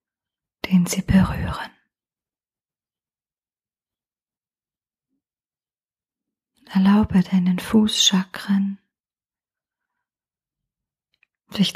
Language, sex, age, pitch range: German, female, 30-49, 185-205 Hz